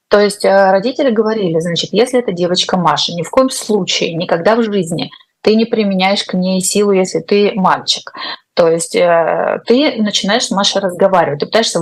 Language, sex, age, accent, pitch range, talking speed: Russian, female, 20-39, native, 175-220 Hz, 175 wpm